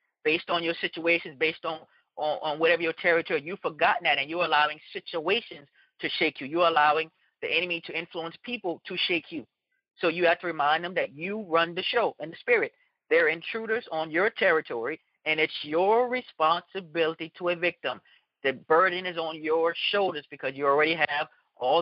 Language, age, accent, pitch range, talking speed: English, 40-59, American, 160-195 Hz, 185 wpm